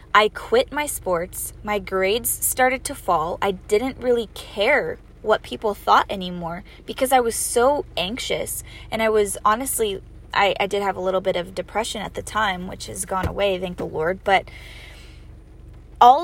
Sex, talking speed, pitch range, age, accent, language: female, 175 wpm, 195-265 Hz, 20-39, American, English